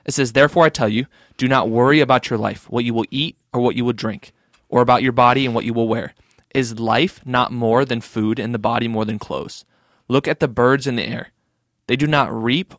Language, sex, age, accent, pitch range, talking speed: English, male, 20-39, American, 115-130 Hz, 250 wpm